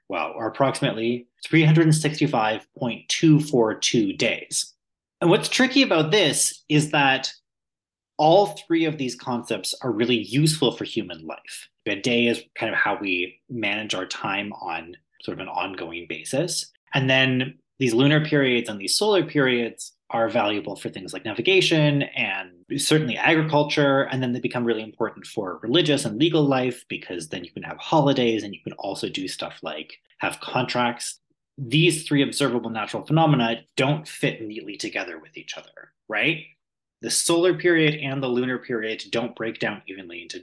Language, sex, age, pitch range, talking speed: English, male, 30-49, 115-155 Hz, 160 wpm